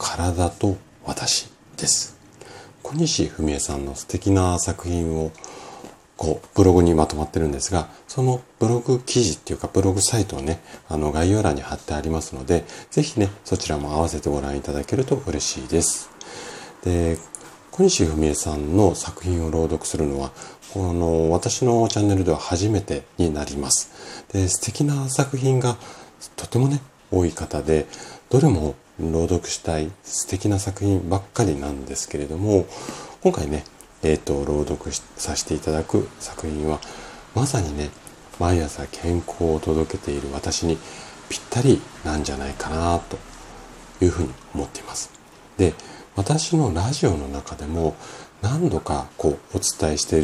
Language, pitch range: Japanese, 75-100 Hz